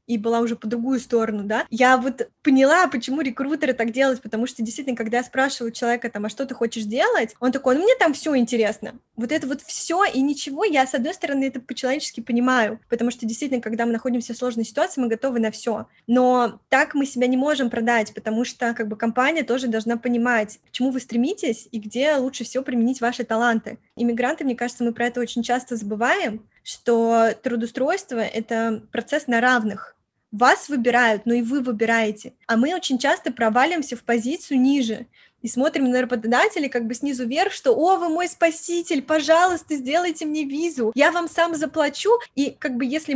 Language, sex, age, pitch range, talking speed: Russian, female, 20-39, 235-275 Hz, 195 wpm